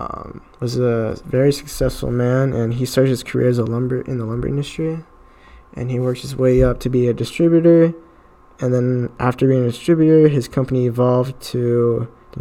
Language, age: English, 10-29